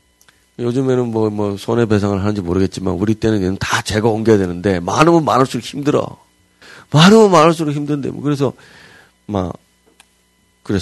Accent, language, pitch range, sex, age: native, Korean, 85-115 Hz, male, 40-59